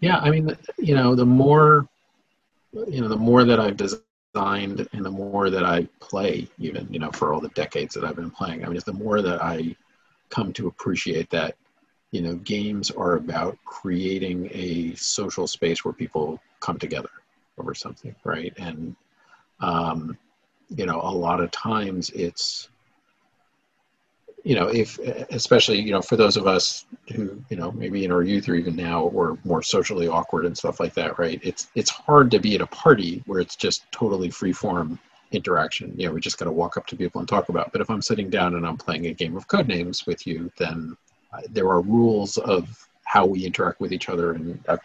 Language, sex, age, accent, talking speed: English, male, 50-69, American, 205 wpm